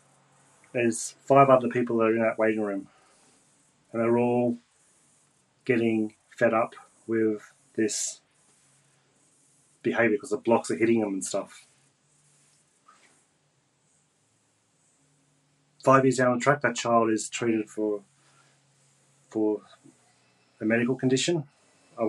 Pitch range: 110-130 Hz